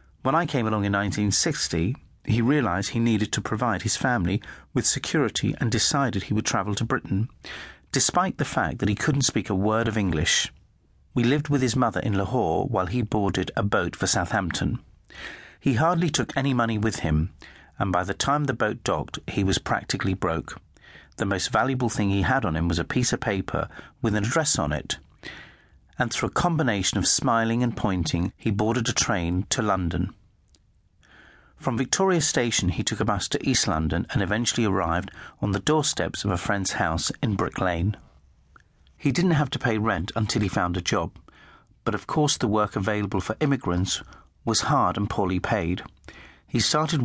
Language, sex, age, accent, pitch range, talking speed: English, male, 40-59, British, 95-125 Hz, 185 wpm